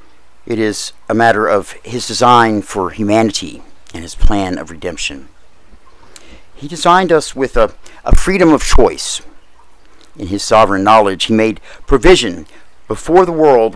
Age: 50-69